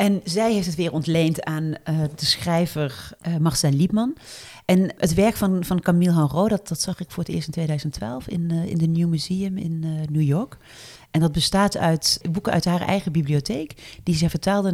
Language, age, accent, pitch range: Dutch, 40-59, Dutch, 150-190 Hz